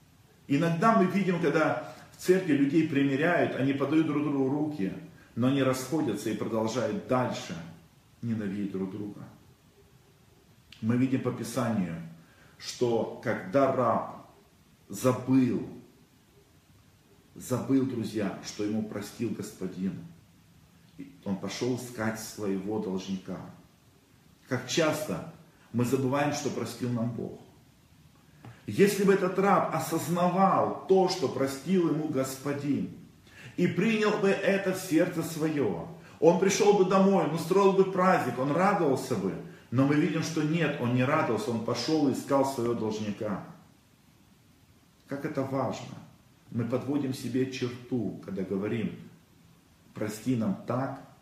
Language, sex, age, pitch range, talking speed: Russian, male, 40-59, 120-160 Hz, 120 wpm